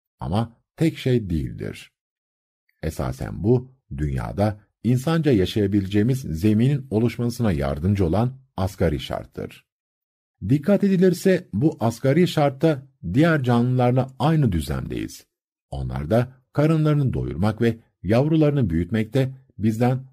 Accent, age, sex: native, 50-69, male